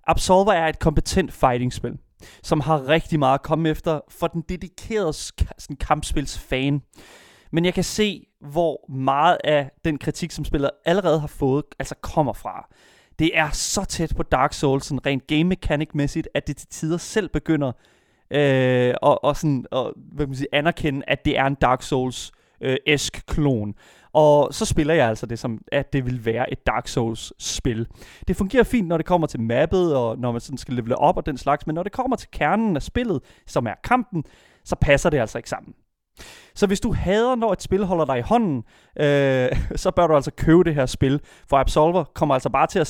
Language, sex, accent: Danish, male, native